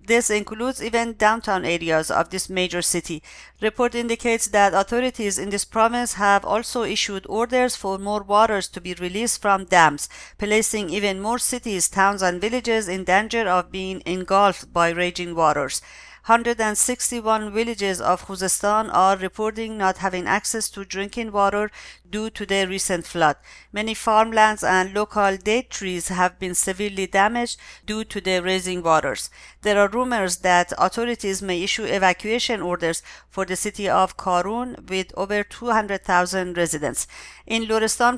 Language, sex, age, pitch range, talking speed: English, female, 50-69, 185-220 Hz, 150 wpm